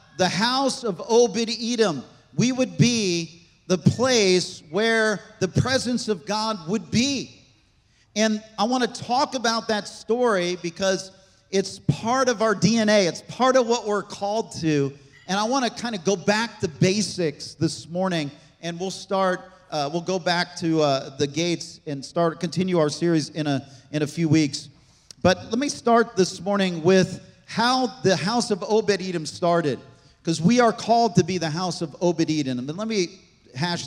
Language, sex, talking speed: English, male, 175 wpm